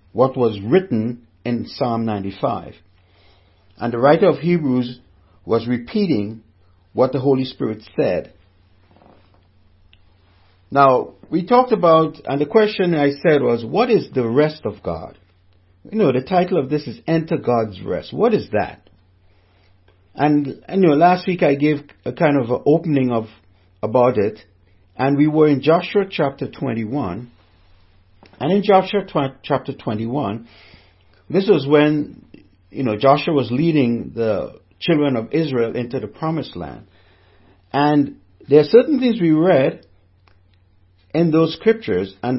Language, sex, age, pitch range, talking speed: English, male, 60-79, 95-150 Hz, 145 wpm